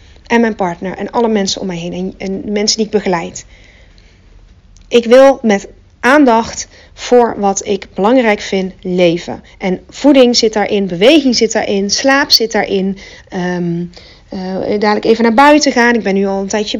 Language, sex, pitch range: Dutch, female, 185-250 Hz